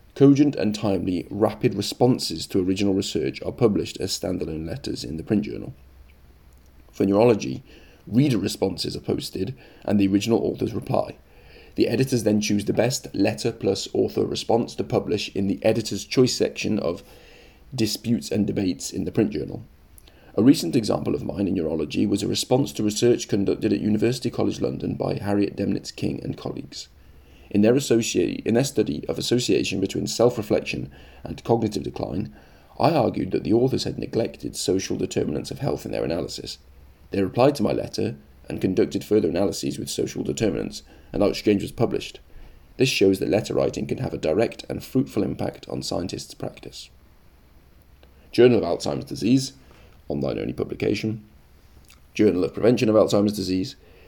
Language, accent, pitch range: English, British, 70-105 Hz